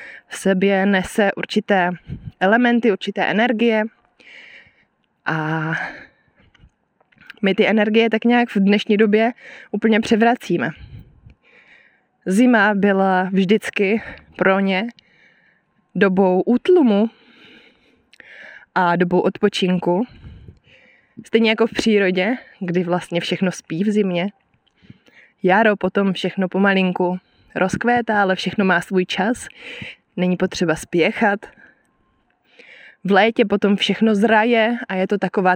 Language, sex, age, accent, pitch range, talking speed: Czech, female, 20-39, native, 185-225 Hz, 100 wpm